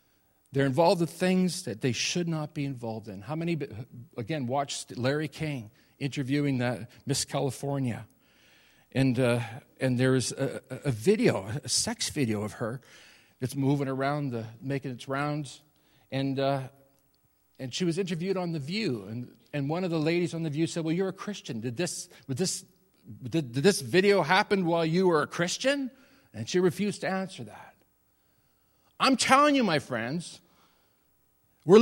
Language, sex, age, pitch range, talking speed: English, male, 50-69, 140-225 Hz, 165 wpm